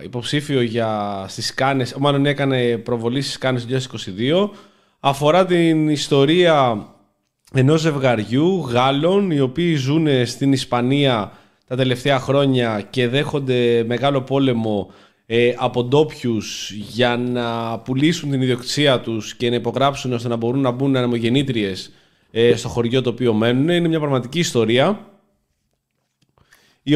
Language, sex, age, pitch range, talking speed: Greek, male, 20-39, 120-160 Hz, 120 wpm